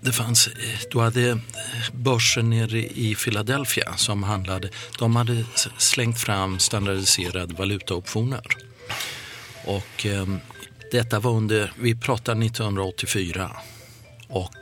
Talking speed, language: 80 wpm, Swedish